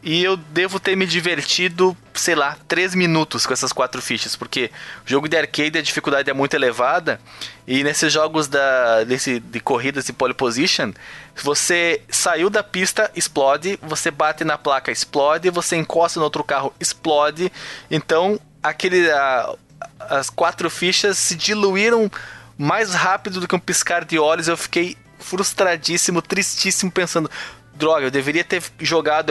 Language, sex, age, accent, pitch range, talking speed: Portuguese, male, 20-39, Brazilian, 130-170 Hz, 155 wpm